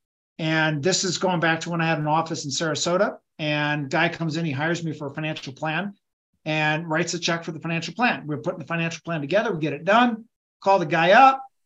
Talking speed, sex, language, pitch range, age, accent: 235 wpm, male, English, 150-190 Hz, 50-69, American